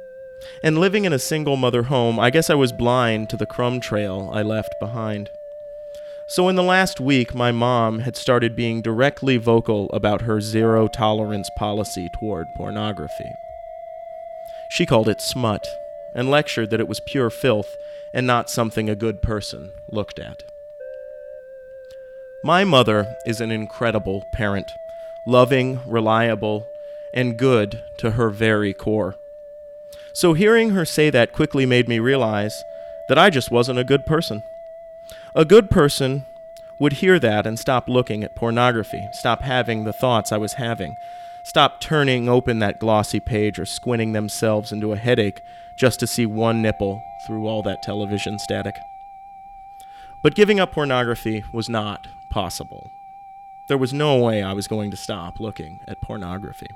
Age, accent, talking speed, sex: 30-49, American, 150 wpm, male